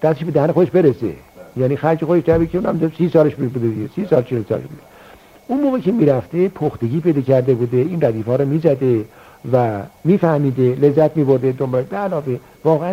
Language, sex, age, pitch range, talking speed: Persian, male, 60-79, 115-165 Hz, 175 wpm